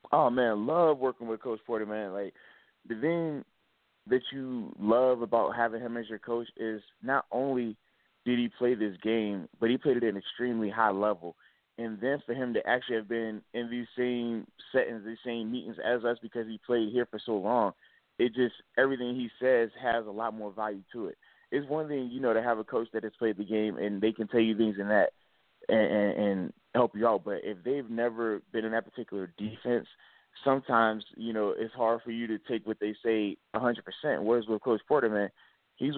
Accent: American